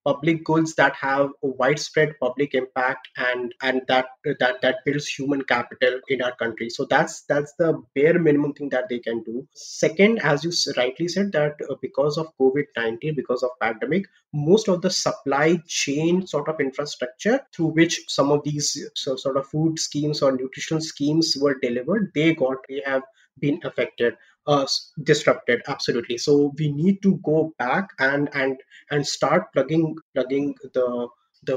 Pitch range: 140-180 Hz